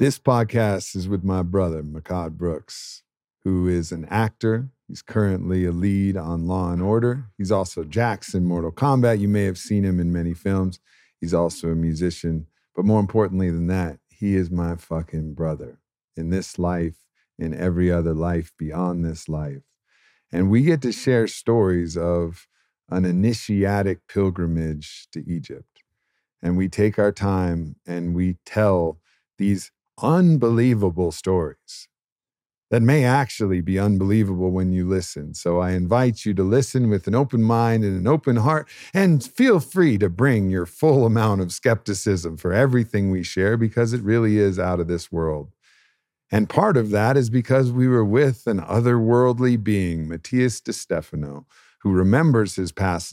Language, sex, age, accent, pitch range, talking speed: English, male, 50-69, American, 85-115 Hz, 160 wpm